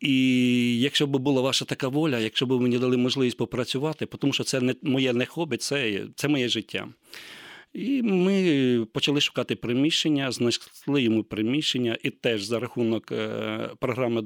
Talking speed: 155 wpm